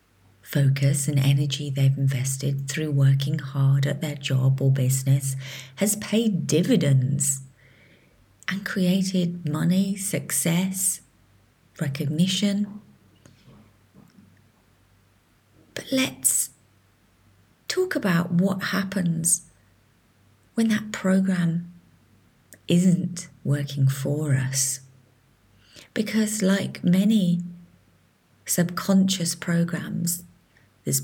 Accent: British